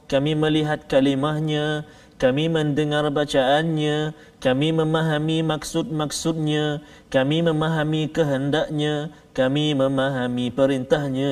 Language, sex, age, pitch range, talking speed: Malayalam, male, 30-49, 130-155 Hz, 80 wpm